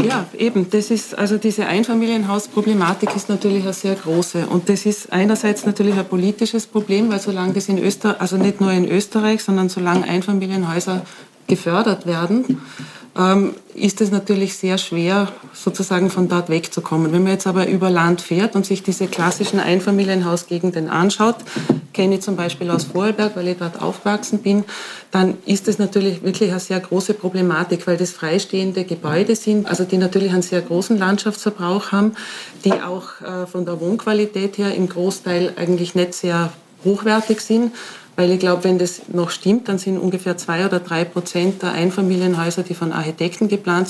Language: German